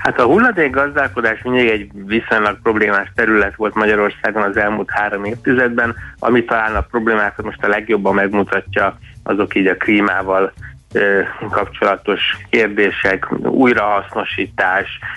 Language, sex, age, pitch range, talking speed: Hungarian, male, 30-49, 95-110 Hz, 120 wpm